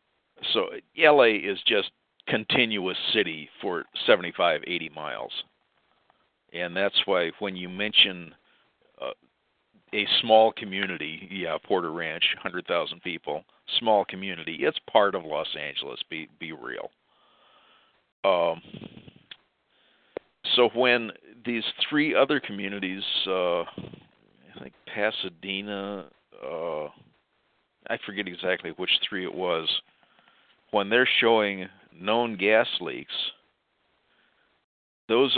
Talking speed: 105 wpm